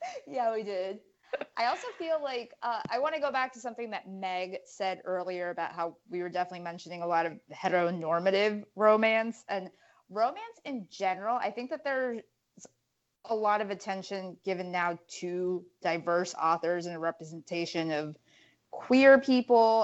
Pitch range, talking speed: 170-210 Hz, 160 wpm